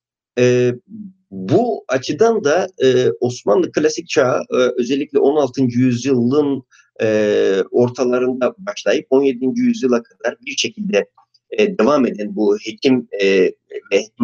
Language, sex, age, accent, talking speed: Turkish, male, 50-69, native, 115 wpm